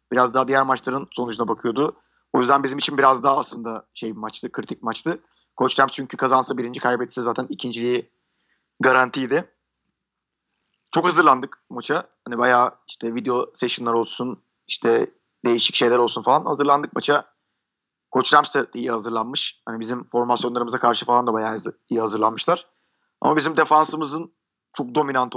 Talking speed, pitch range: 140 wpm, 120-135 Hz